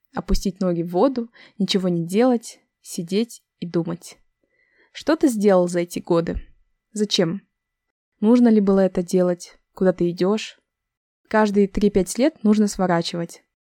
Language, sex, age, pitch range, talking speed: Russian, female, 20-39, 180-220 Hz, 130 wpm